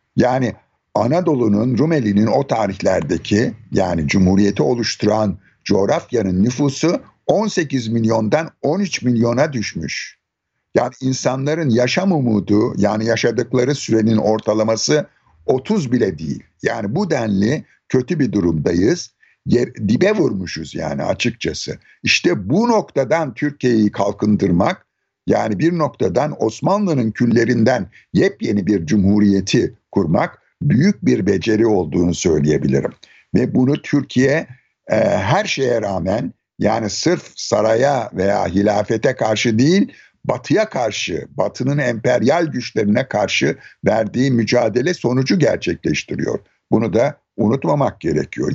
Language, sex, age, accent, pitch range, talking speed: Turkish, male, 60-79, native, 105-145 Hz, 105 wpm